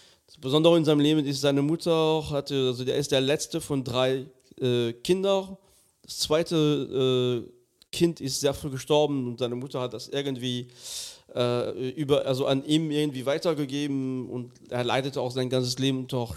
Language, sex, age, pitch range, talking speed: German, male, 40-59, 125-155 Hz, 170 wpm